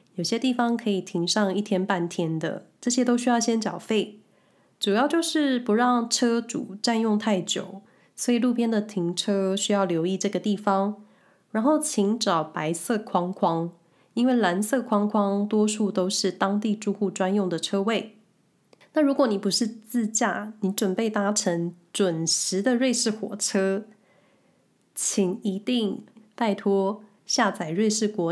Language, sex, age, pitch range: Chinese, female, 20-39, 190-225 Hz